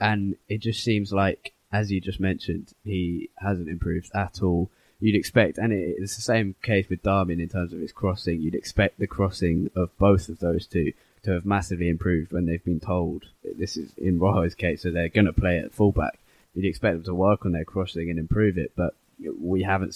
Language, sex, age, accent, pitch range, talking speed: English, male, 10-29, British, 90-100 Hz, 215 wpm